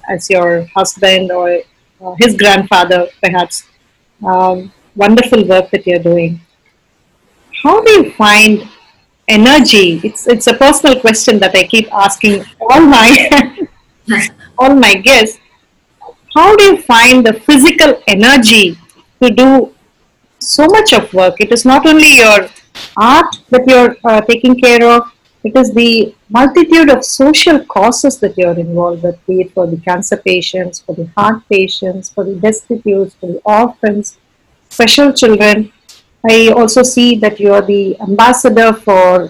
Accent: Indian